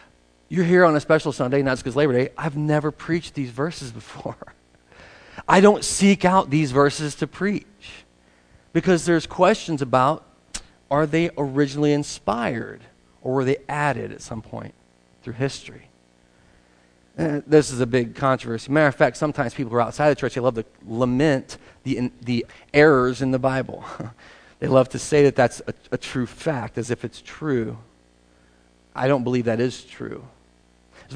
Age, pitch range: 40-59, 110-145 Hz